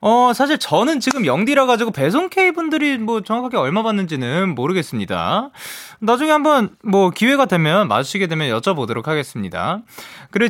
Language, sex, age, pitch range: Korean, male, 20-39, 135-210 Hz